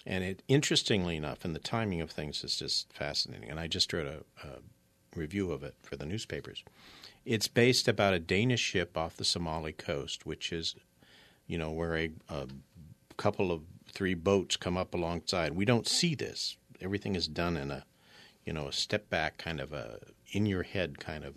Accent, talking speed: American, 190 wpm